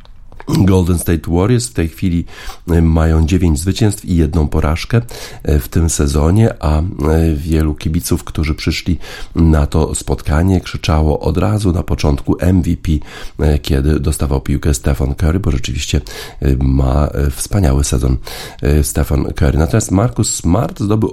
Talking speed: 130 wpm